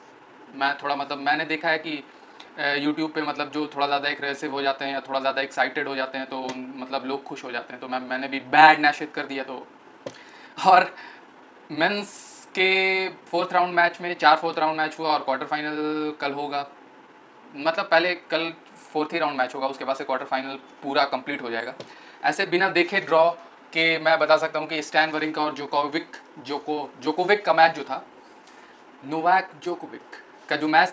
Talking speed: 190 wpm